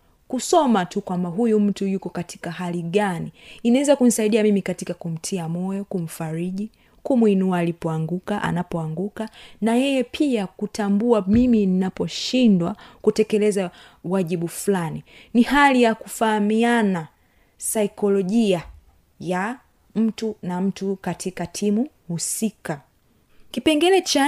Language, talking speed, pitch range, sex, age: Swahili, 105 wpm, 180-230 Hz, female, 30-49